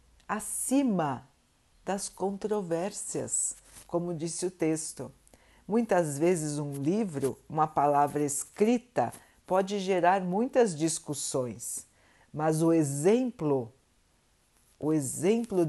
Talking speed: 90 wpm